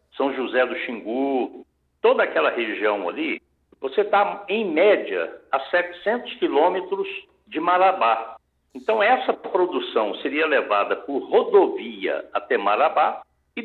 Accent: Brazilian